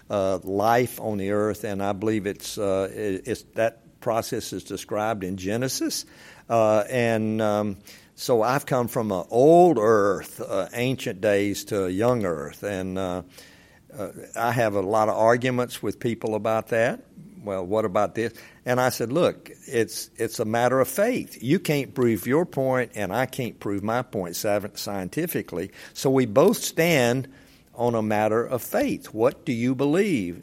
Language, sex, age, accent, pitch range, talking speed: English, male, 60-79, American, 100-120 Hz, 170 wpm